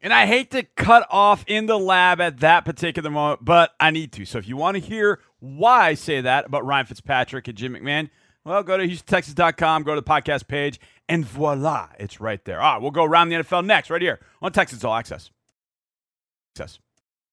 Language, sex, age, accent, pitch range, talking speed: English, male, 40-59, American, 125-170 Hz, 210 wpm